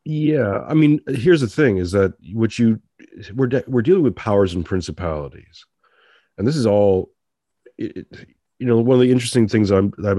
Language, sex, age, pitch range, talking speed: English, male, 40-59, 90-110 Hz, 200 wpm